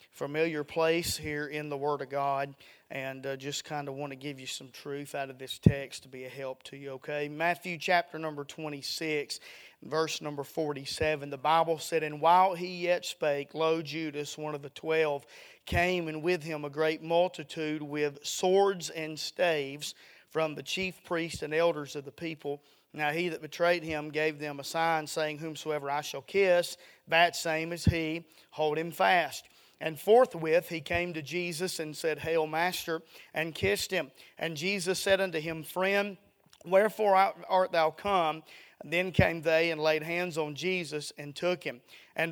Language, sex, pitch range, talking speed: English, male, 150-175 Hz, 180 wpm